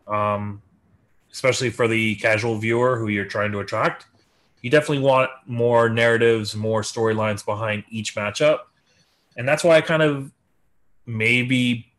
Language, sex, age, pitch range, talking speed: English, male, 20-39, 110-130 Hz, 140 wpm